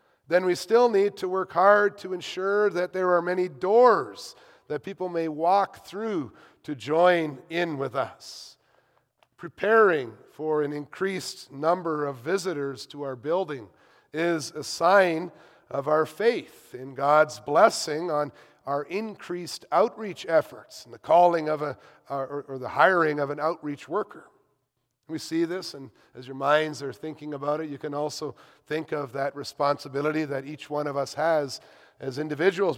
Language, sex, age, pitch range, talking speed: English, male, 40-59, 140-180 Hz, 155 wpm